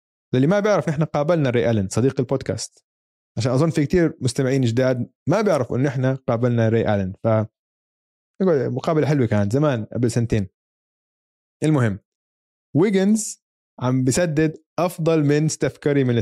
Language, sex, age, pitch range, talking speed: Arabic, male, 20-39, 110-140 Hz, 140 wpm